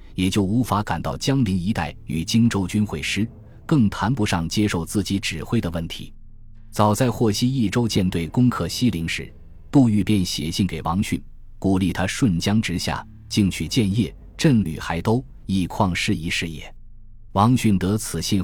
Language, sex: Chinese, male